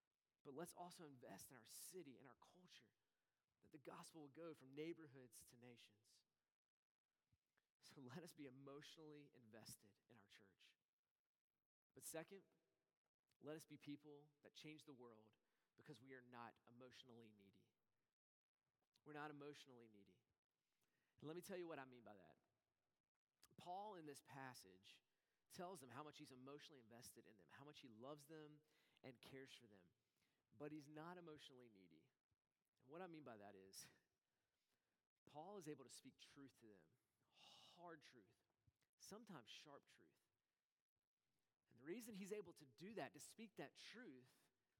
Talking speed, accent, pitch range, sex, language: 155 wpm, American, 120-170 Hz, male, English